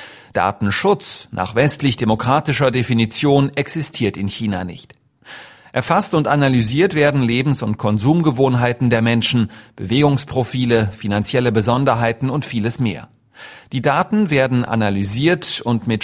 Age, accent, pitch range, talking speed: 40-59, German, 110-140 Hz, 110 wpm